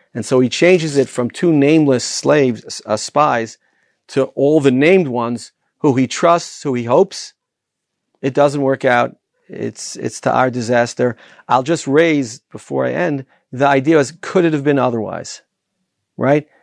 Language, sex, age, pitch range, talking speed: English, male, 40-59, 120-150 Hz, 165 wpm